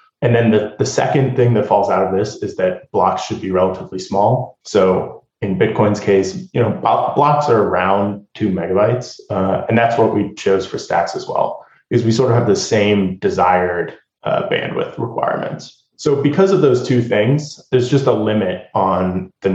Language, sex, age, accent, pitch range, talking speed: English, male, 20-39, American, 100-130 Hz, 190 wpm